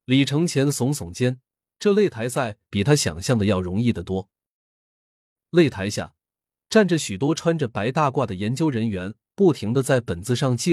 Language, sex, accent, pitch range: Chinese, male, native, 100-150 Hz